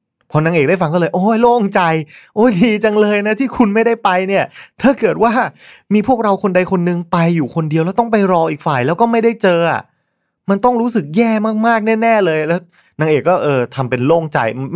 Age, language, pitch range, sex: 20-39, Thai, 130-190 Hz, male